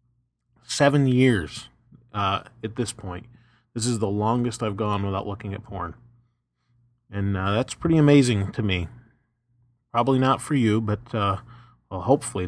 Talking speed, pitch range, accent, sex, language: 155 wpm, 105-120 Hz, American, male, English